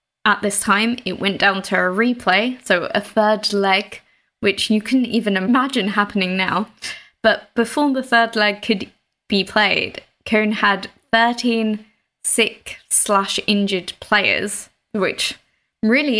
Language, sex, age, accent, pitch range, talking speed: English, female, 10-29, British, 190-225 Hz, 130 wpm